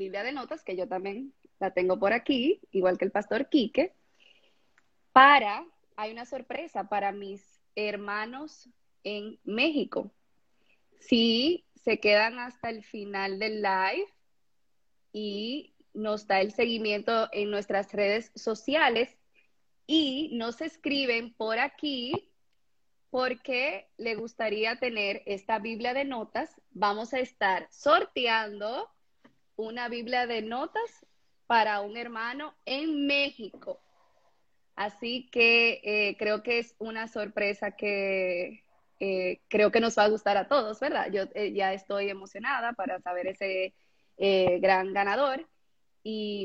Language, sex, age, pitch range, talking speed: Spanish, female, 20-39, 200-255 Hz, 125 wpm